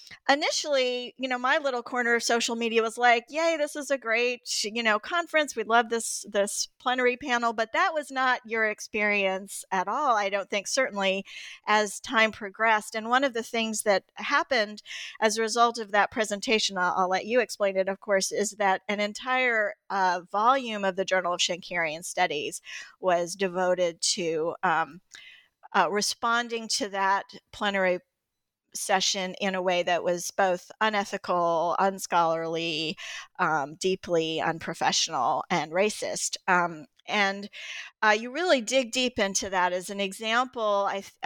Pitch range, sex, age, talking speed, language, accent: 190-235 Hz, female, 40-59, 155 wpm, English, American